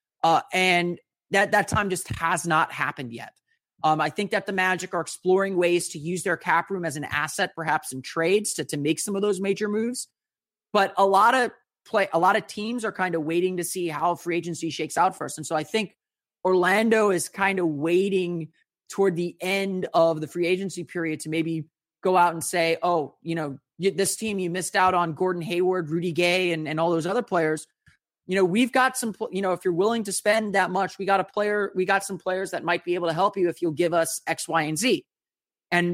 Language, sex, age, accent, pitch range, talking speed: English, male, 30-49, American, 165-195 Hz, 230 wpm